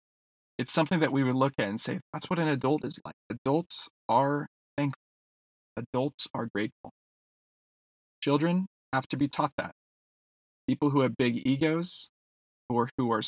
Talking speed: 160 wpm